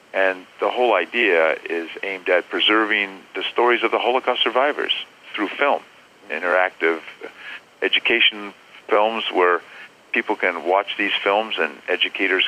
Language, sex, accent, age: English, male, American, 50-69